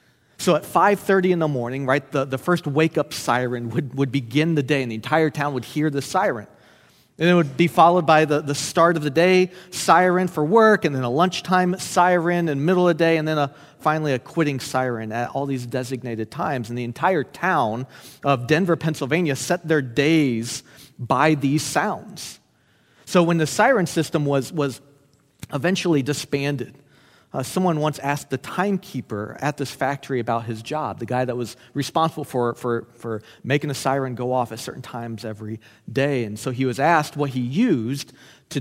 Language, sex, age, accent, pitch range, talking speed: English, male, 40-59, American, 125-160 Hz, 190 wpm